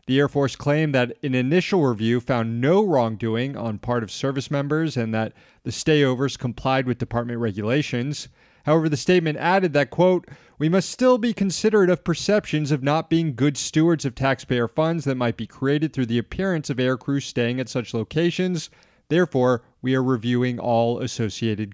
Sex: male